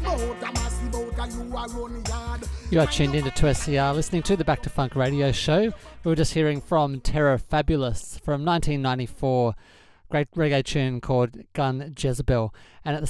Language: English